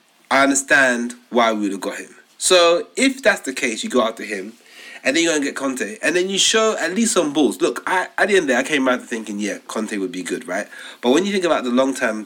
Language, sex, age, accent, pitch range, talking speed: English, male, 30-49, British, 110-170 Hz, 280 wpm